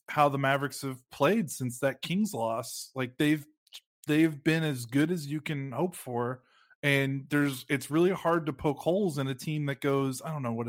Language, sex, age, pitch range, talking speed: English, male, 20-39, 125-150 Hz, 210 wpm